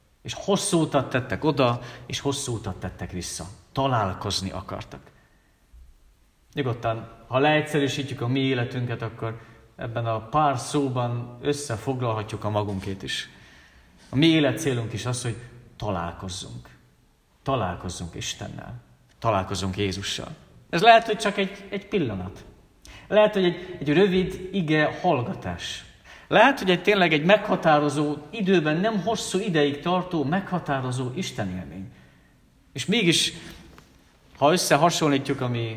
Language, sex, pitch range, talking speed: Hungarian, male, 110-155 Hz, 120 wpm